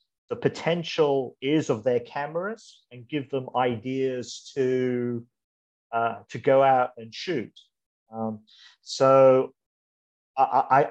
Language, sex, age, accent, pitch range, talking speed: English, male, 40-59, British, 115-135 Hz, 110 wpm